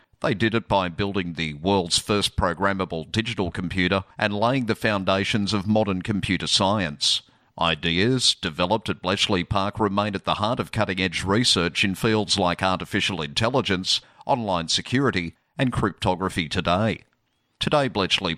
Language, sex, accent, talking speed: English, male, Australian, 140 wpm